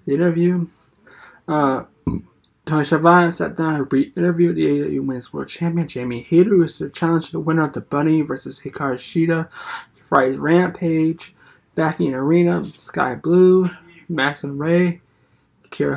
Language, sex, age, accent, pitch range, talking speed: English, male, 20-39, American, 140-170 Hz, 145 wpm